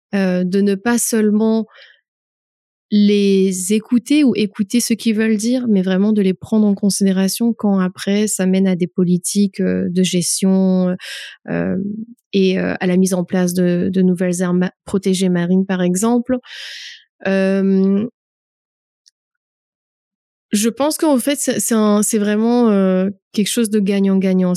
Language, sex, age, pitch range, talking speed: English, female, 30-49, 190-215 Hz, 145 wpm